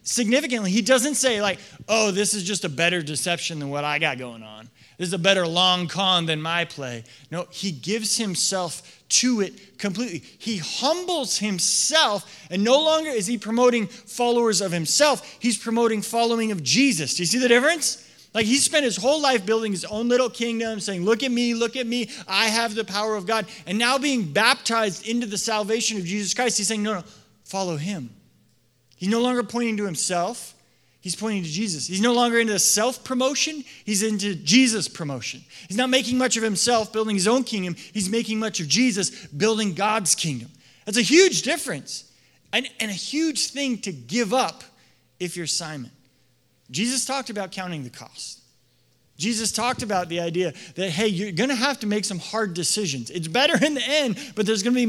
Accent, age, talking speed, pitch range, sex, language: American, 30-49, 195 wpm, 180-240 Hz, male, English